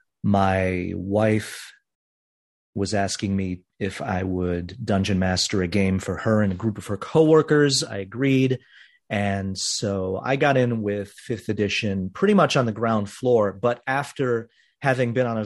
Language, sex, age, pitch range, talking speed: English, male, 30-49, 95-120 Hz, 165 wpm